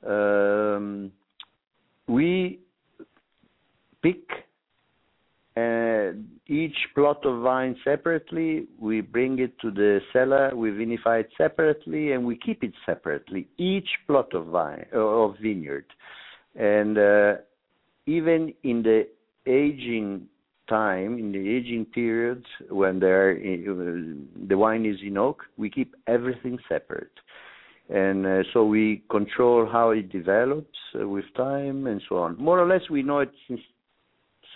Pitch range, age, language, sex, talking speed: 100-130 Hz, 60-79, English, male, 125 wpm